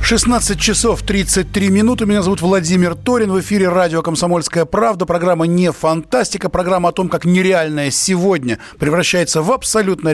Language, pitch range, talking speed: Russian, 165-200 Hz, 150 wpm